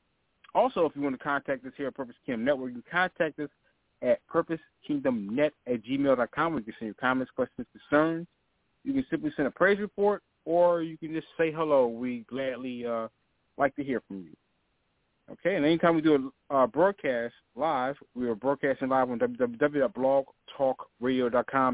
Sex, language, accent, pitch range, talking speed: male, English, American, 130-165 Hz, 180 wpm